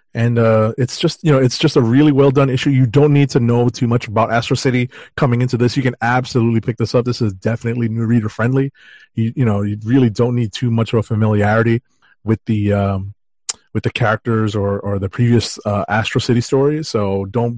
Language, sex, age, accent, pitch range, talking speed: English, male, 30-49, American, 110-130 Hz, 225 wpm